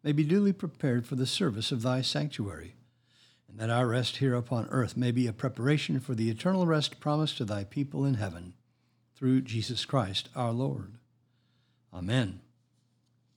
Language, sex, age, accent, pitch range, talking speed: English, male, 60-79, American, 115-135 Hz, 165 wpm